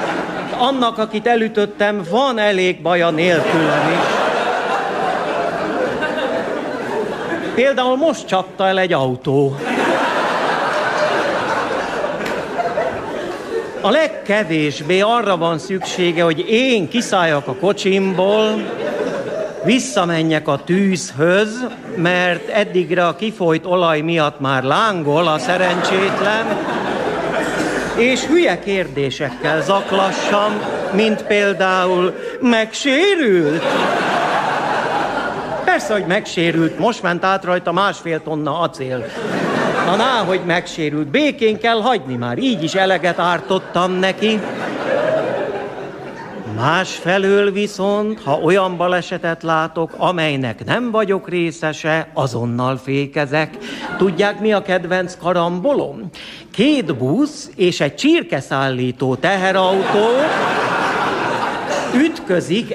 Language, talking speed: Hungarian, 85 wpm